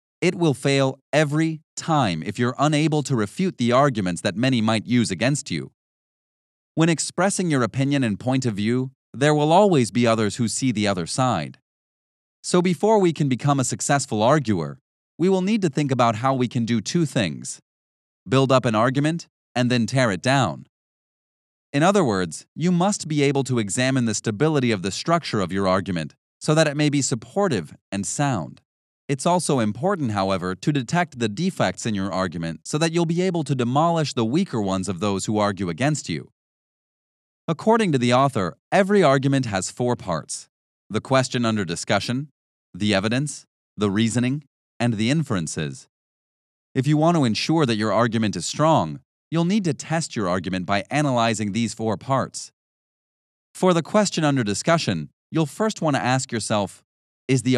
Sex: male